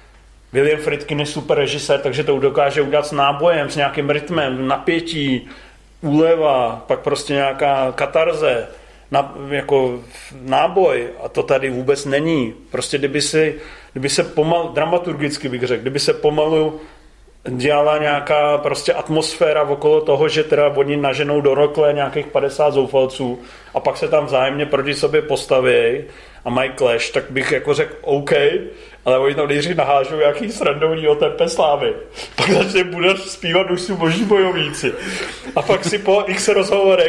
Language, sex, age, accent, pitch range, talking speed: Czech, male, 40-59, native, 145-210 Hz, 150 wpm